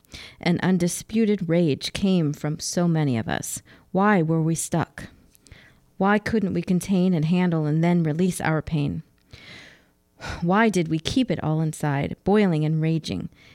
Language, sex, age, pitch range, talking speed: English, female, 40-59, 160-190 Hz, 150 wpm